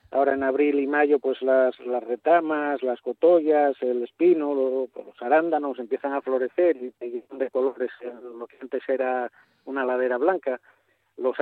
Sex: male